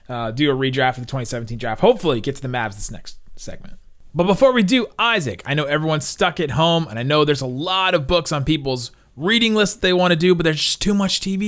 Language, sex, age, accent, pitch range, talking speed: English, male, 30-49, American, 140-190 Hz, 250 wpm